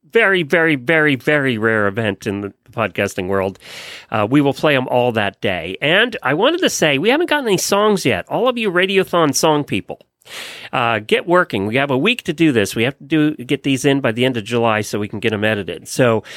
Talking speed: 235 wpm